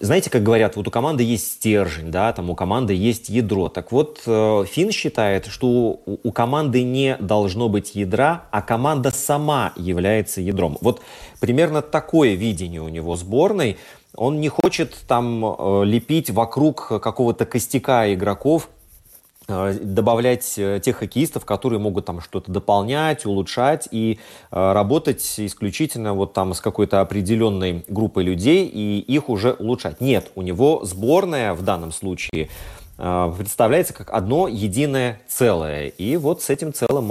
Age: 30-49